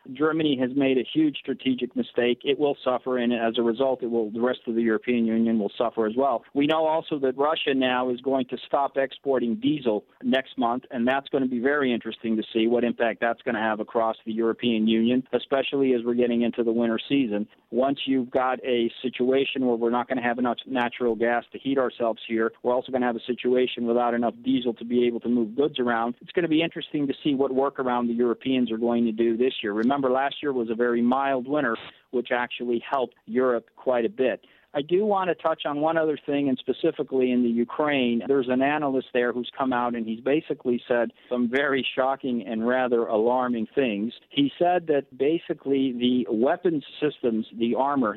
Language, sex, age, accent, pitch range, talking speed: English, male, 40-59, American, 120-135 Hz, 215 wpm